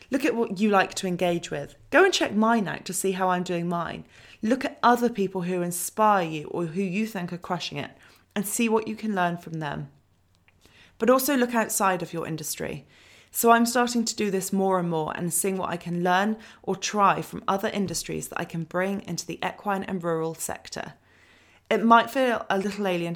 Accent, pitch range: British, 165-220 Hz